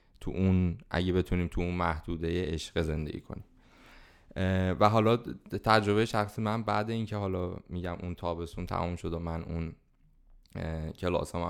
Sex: male